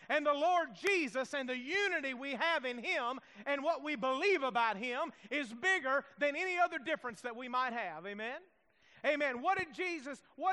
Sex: male